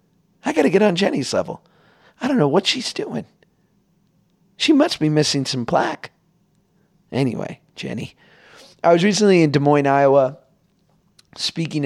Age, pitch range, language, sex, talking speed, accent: 30-49, 125-170 Hz, English, male, 145 wpm, American